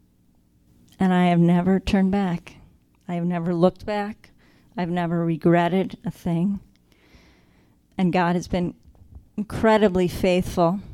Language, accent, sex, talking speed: English, American, female, 120 wpm